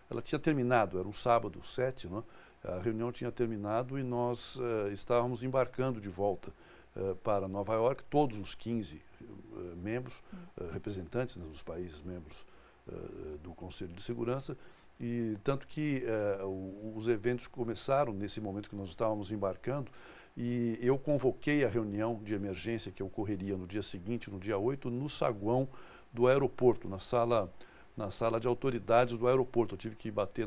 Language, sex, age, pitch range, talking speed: Portuguese, male, 60-79, 100-120 Hz, 160 wpm